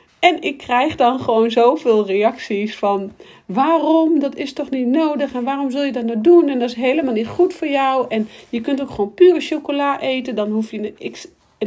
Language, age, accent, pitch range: Dutch, 40-59, Dutch, 210-270 Hz